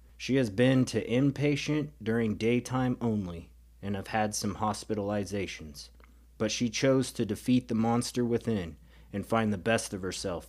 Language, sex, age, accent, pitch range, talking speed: English, male, 30-49, American, 75-115 Hz, 155 wpm